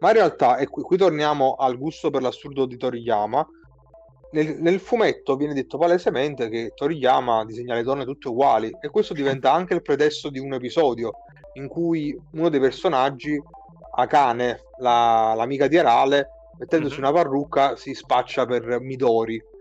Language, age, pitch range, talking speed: Italian, 30-49, 125-165 Hz, 160 wpm